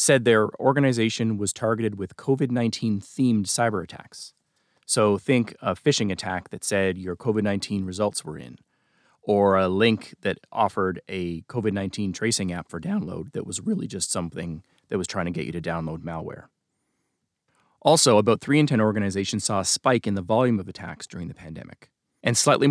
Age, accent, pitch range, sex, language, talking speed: 30-49, American, 95-130 Hz, male, English, 170 wpm